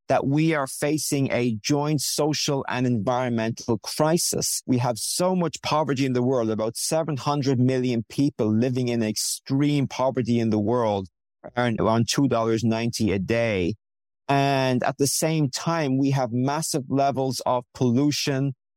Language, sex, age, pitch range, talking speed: English, male, 50-69, 120-150 Hz, 145 wpm